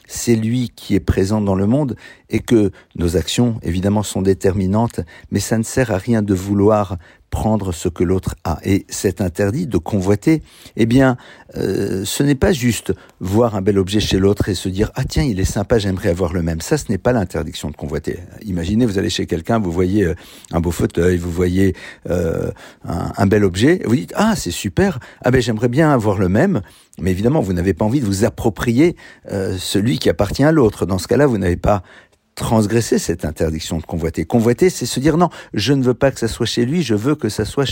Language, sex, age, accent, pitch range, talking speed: French, male, 50-69, French, 95-120 Hz, 230 wpm